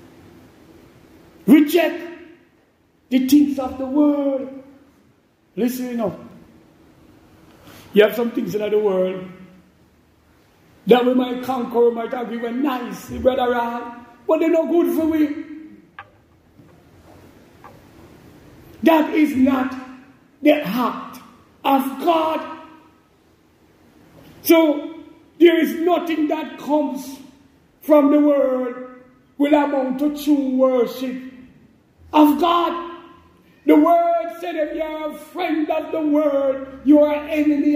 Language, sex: English, male